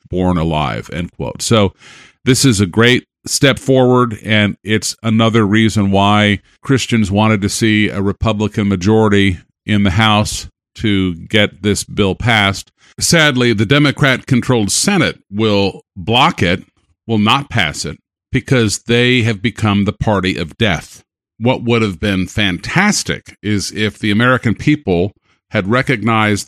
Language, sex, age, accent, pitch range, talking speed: English, male, 50-69, American, 100-125 Hz, 145 wpm